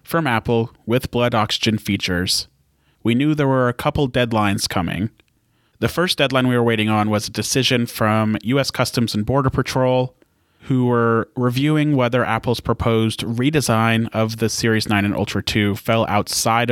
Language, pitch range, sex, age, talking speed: English, 105-130 Hz, male, 30-49, 165 wpm